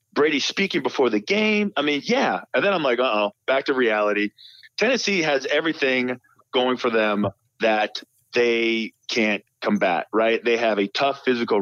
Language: English